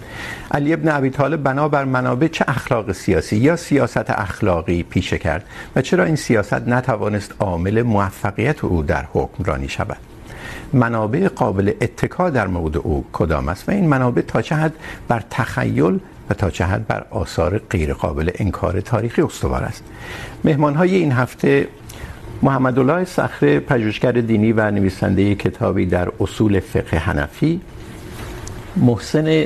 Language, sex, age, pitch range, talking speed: Urdu, male, 60-79, 95-130 Hz, 145 wpm